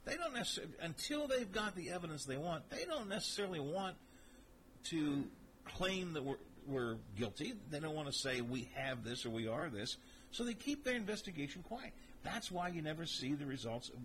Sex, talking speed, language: male, 190 wpm, English